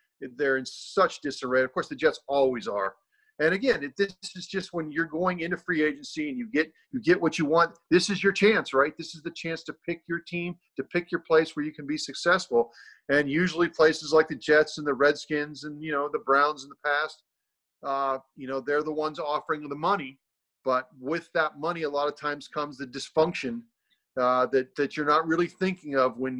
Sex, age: male, 40-59